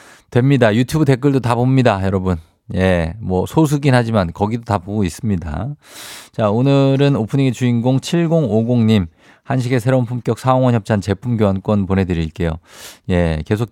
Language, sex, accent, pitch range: Korean, male, native, 95-125 Hz